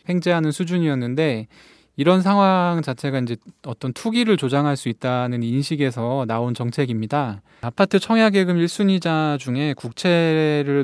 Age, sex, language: 20-39, male, Korean